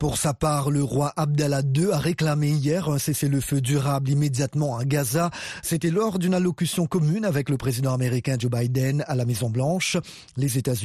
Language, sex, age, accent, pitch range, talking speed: French, male, 40-59, French, 135-170 Hz, 175 wpm